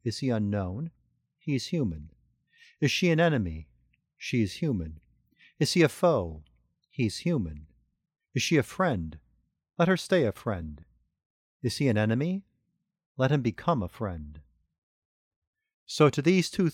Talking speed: 145 wpm